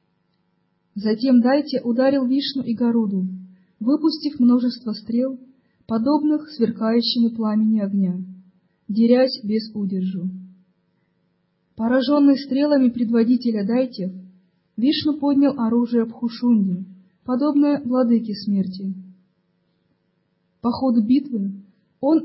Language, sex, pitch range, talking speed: Russian, female, 190-260 Hz, 85 wpm